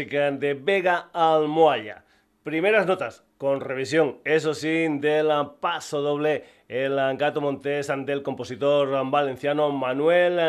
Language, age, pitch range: Spanish, 30-49, 135-165 Hz